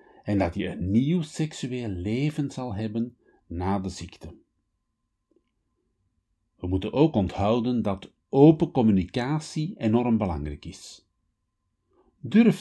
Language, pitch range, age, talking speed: Dutch, 95-130 Hz, 50-69, 110 wpm